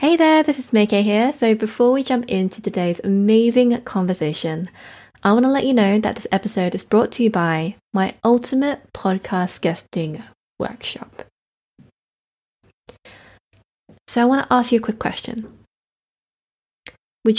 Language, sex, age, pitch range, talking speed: English, female, 20-39, 185-235 Hz, 150 wpm